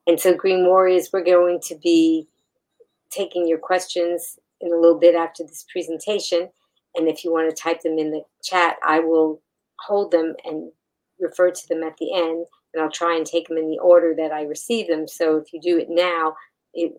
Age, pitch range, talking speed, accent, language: 50-69, 160-180 Hz, 210 wpm, American, English